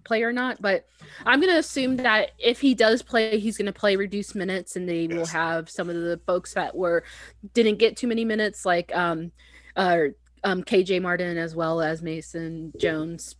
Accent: American